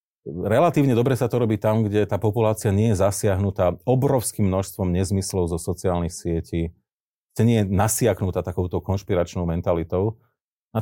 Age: 40-59